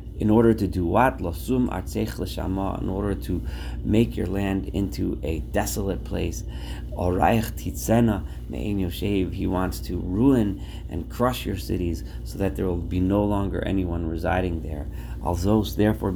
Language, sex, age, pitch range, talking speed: English, male, 40-59, 85-110 Hz, 125 wpm